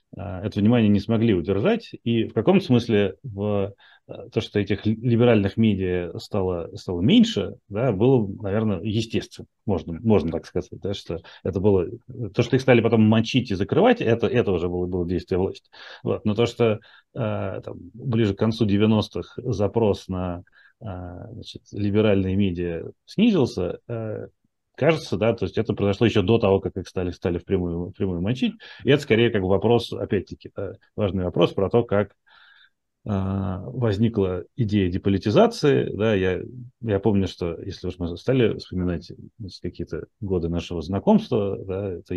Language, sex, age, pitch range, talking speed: Russian, male, 30-49, 95-120 Hz, 150 wpm